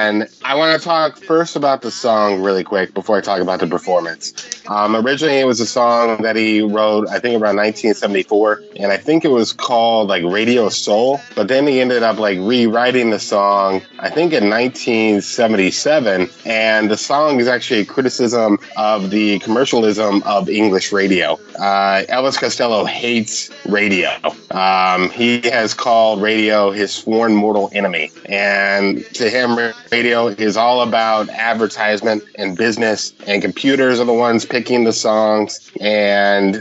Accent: American